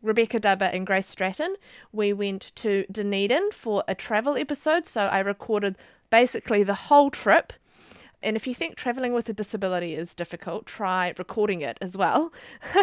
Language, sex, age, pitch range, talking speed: English, female, 30-49, 185-225 Hz, 165 wpm